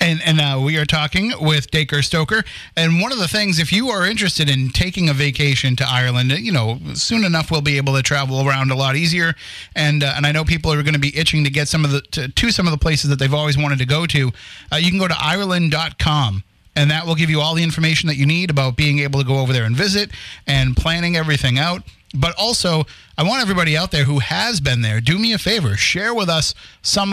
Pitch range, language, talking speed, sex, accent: 140-170 Hz, English, 255 wpm, male, American